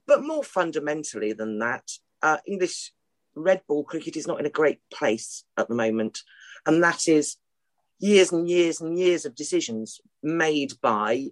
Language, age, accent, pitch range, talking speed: English, 40-59, British, 140-180 Hz, 165 wpm